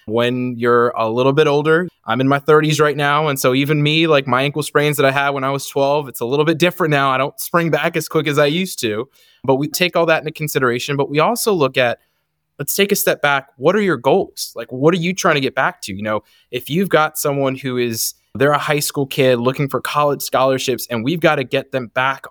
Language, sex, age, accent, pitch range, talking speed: English, male, 20-39, American, 125-155 Hz, 260 wpm